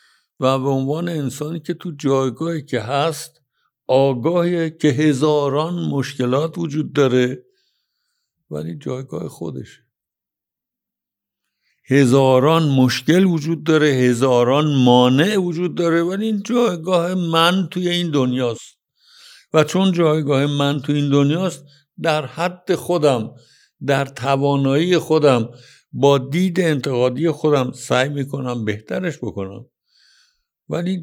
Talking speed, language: 105 wpm, Persian